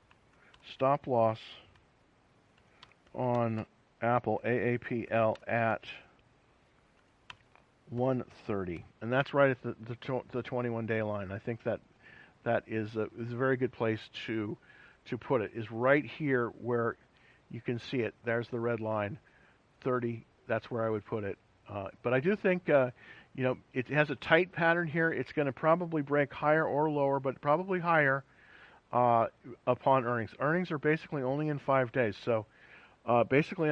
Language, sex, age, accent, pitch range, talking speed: English, male, 50-69, American, 115-145 Hz, 160 wpm